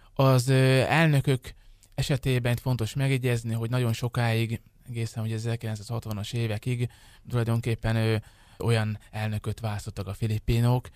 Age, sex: 20-39, male